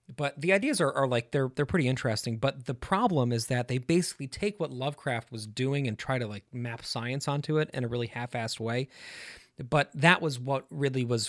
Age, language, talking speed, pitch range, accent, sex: 30-49, English, 225 wpm, 115-140 Hz, American, male